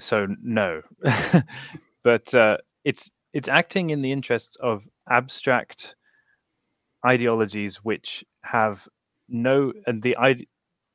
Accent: British